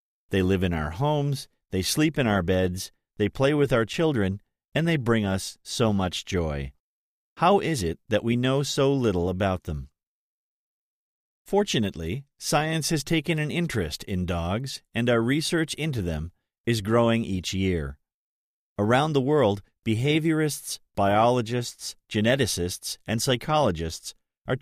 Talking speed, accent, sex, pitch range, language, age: 140 wpm, American, male, 95-140 Hz, English, 40-59